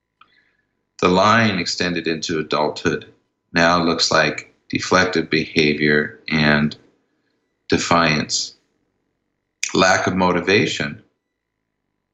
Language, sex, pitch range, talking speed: English, male, 80-95 Hz, 75 wpm